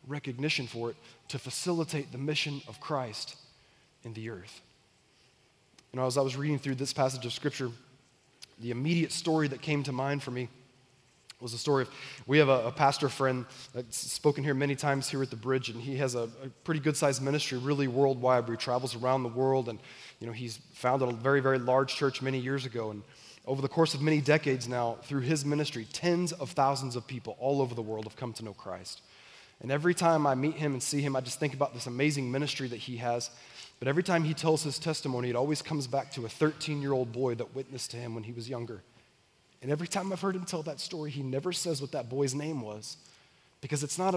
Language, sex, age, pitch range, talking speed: English, male, 20-39, 125-145 Hz, 225 wpm